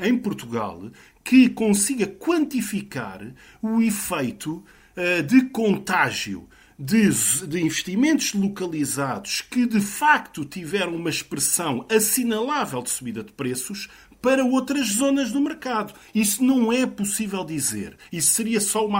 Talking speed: 115 wpm